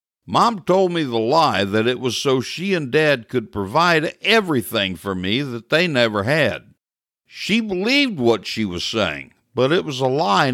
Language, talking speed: English, 180 wpm